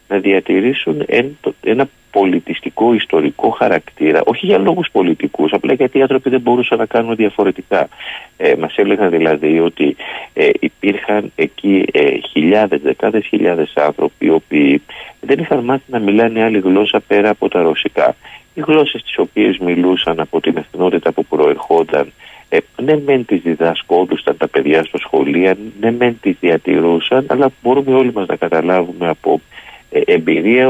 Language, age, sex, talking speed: Greek, 50-69, male, 145 wpm